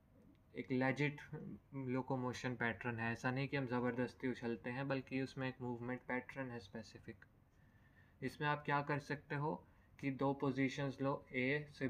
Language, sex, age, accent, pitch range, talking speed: Hindi, male, 20-39, native, 115-140 Hz, 155 wpm